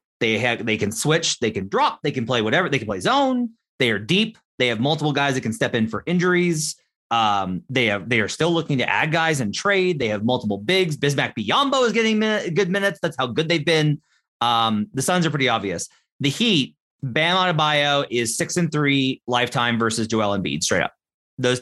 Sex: male